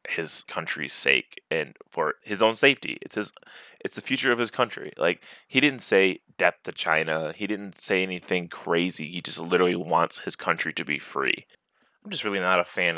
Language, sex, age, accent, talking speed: English, male, 20-39, American, 200 wpm